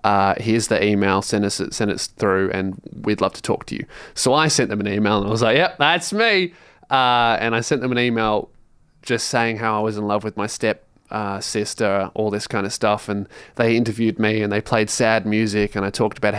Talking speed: 240 wpm